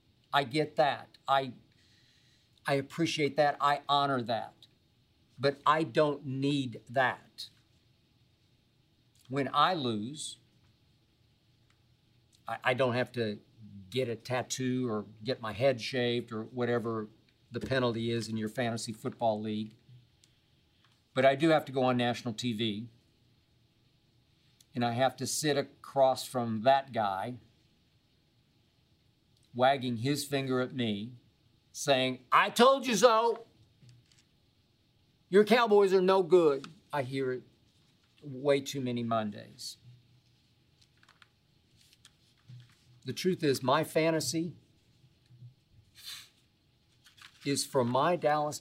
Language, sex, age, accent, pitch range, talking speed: English, male, 50-69, American, 115-140 Hz, 110 wpm